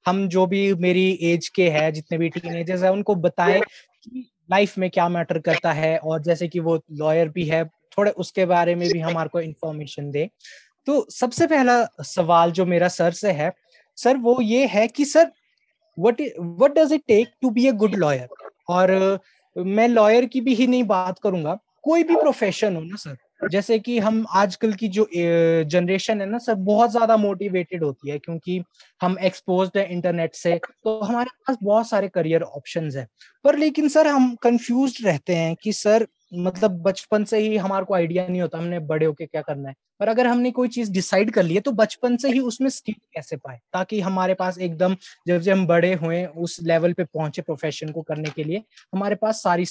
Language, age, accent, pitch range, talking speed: Hindi, 20-39, native, 170-220 Hz, 205 wpm